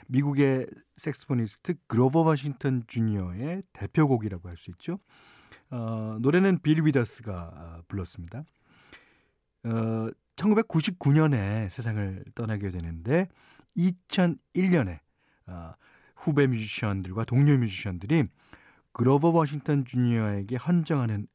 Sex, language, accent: male, Korean, native